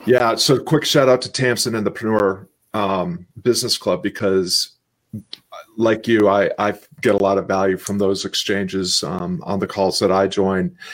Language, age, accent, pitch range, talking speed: English, 40-59, American, 100-130 Hz, 180 wpm